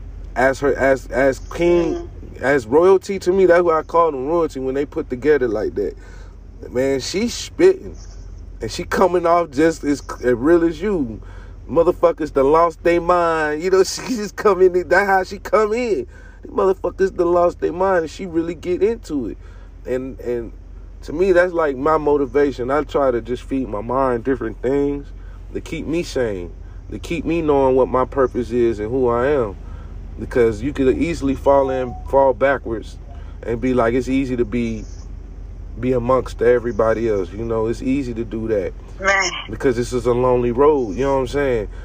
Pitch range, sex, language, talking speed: 110-160 Hz, male, English, 190 wpm